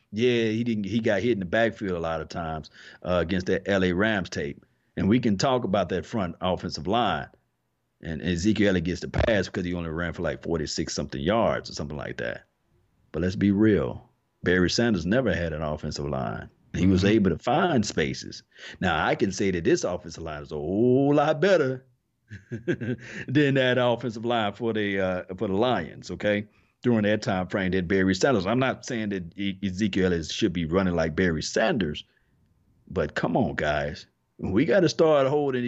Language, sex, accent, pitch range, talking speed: English, male, American, 85-115 Hz, 195 wpm